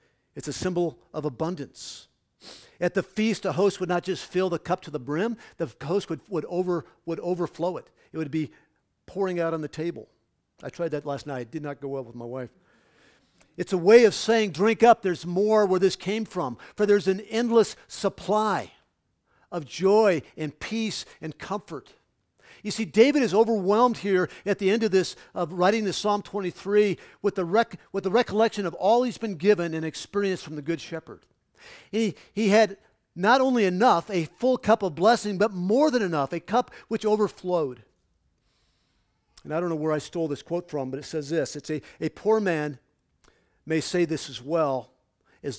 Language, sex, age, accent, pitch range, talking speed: English, male, 50-69, American, 155-210 Hz, 195 wpm